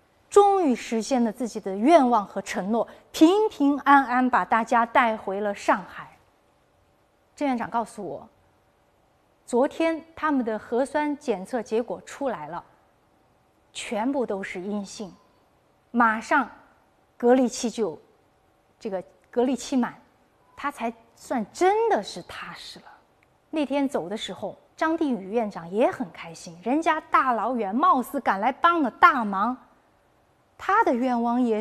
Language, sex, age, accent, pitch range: Chinese, female, 20-39, native, 220-280 Hz